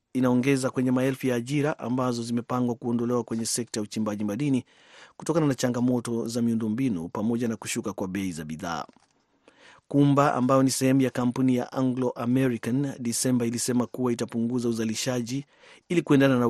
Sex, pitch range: male, 115-130 Hz